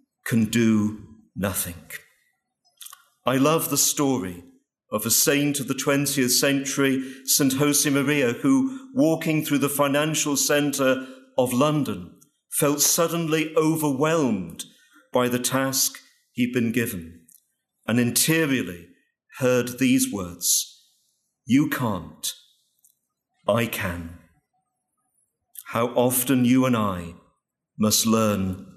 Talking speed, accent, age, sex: 100 wpm, British, 50-69, male